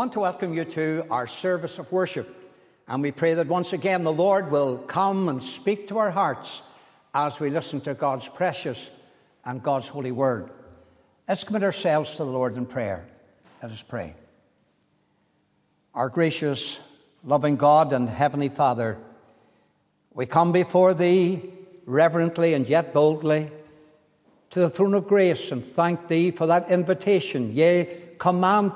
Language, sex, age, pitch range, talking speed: English, male, 60-79, 140-185 Hz, 155 wpm